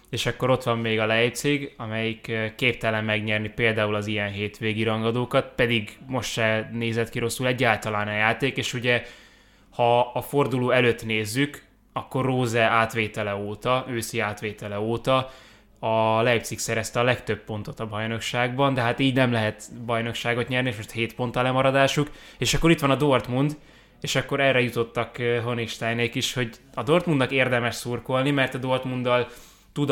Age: 20-39